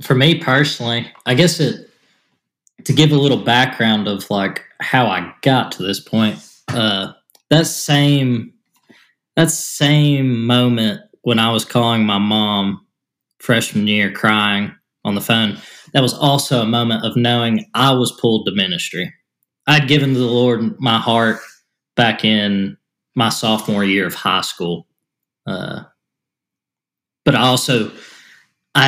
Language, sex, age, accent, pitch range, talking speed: English, male, 20-39, American, 110-140 Hz, 145 wpm